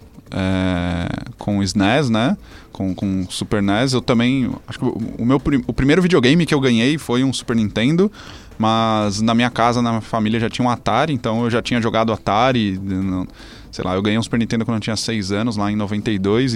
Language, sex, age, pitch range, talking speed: Portuguese, male, 20-39, 100-120 Hz, 210 wpm